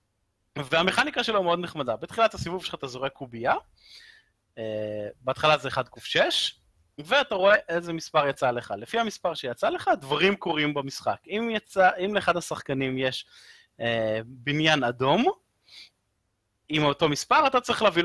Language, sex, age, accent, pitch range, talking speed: Hebrew, male, 30-49, native, 130-190 Hz, 135 wpm